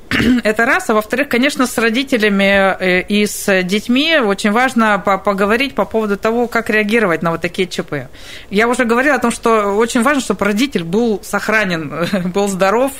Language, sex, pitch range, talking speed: Russian, female, 175-220 Hz, 165 wpm